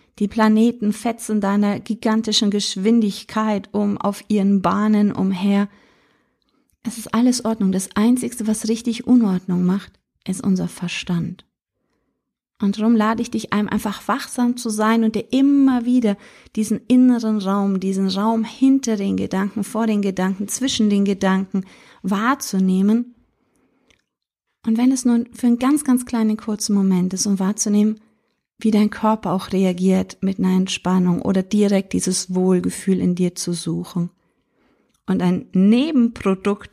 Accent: German